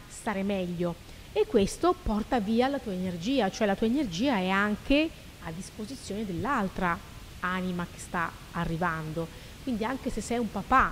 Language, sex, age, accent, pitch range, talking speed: Italian, female, 30-49, native, 185-250 Hz, 155 wpm